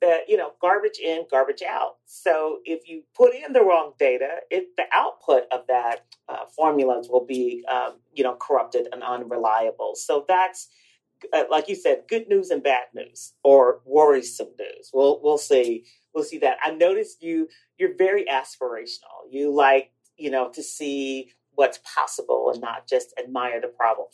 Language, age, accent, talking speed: English, 40-59, American, 170 wpm